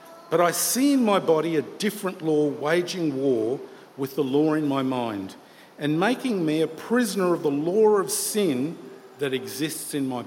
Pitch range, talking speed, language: 140-190 Hz, 180 wpm, English